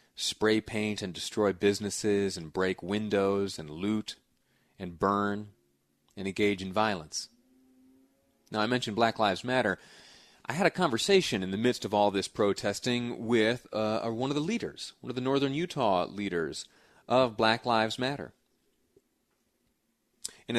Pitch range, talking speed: 100-135 Hz, 150 wpm